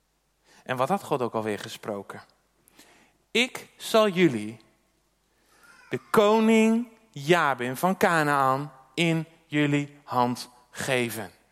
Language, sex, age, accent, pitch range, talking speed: Dutch, male, 40-59, Dutch, 130-205 Hz, 100 wpm